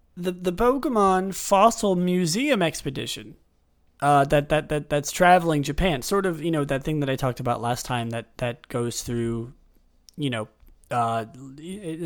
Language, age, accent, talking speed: English, 30-49, American, 160 wpm